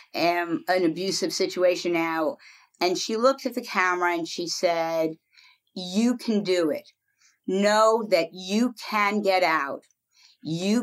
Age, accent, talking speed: 50-69, American, 140 wpm